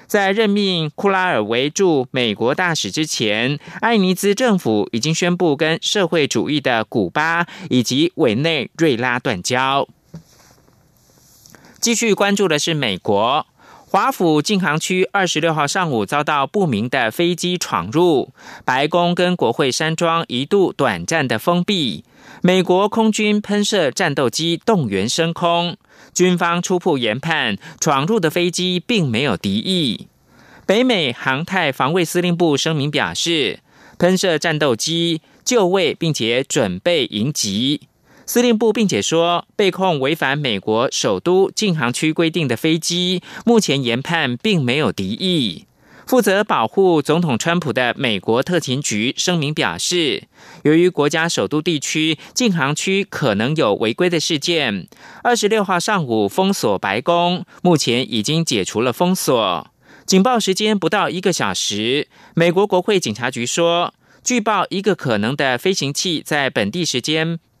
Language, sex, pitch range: German, male, 150-195 Hz